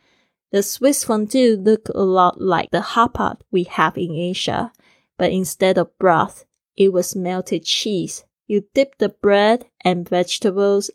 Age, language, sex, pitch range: 10-29, Chinese, female, 180-210 Hz